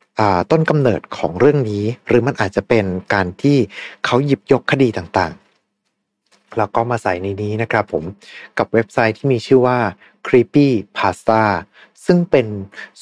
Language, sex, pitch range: Thai, male, 100-140 Hz